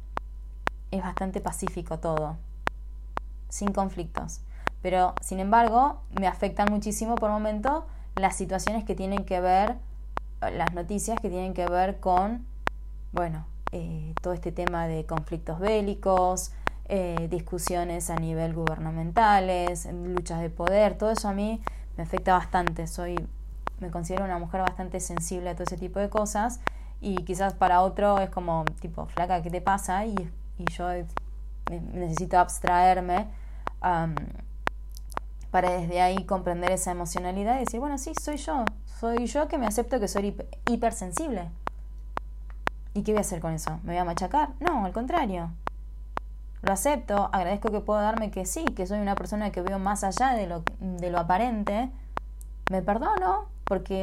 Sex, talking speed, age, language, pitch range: female, 150 wpm, 20-39, Spanish, 175-210 Hz